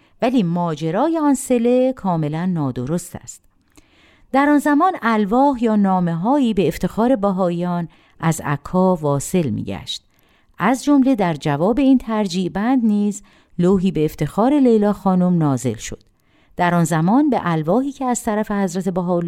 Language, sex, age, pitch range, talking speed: Persian, female, 50-69, 160-245 Hz, 145 wpm